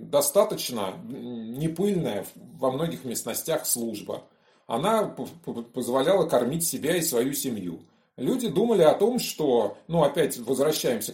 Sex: male